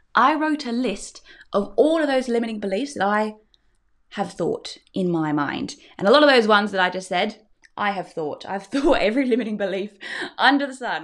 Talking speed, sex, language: 205 wpm, female, English